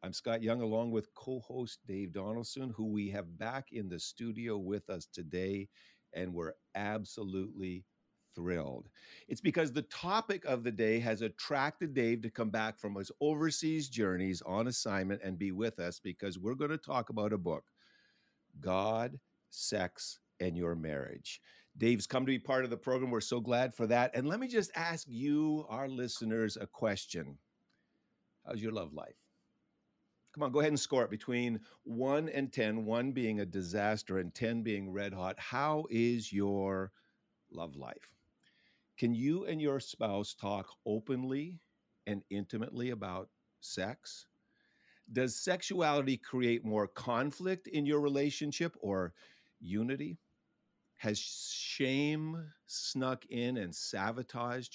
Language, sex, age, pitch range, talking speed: English, male, 50-69, 100-130 Hz, 150 wpm